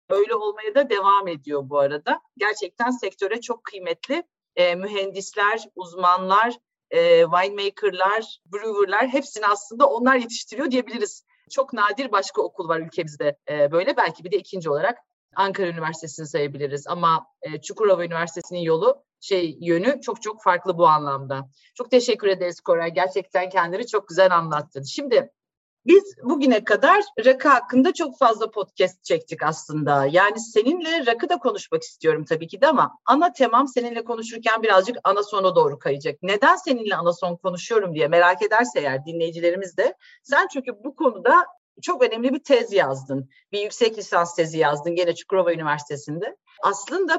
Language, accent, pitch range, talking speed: Turkish, native, 175-275 Hz, 150 wpm